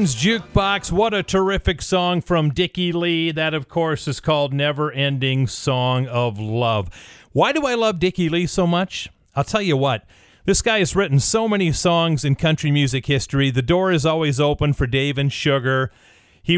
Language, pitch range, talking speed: English, 135-180 Hz, 185 wpm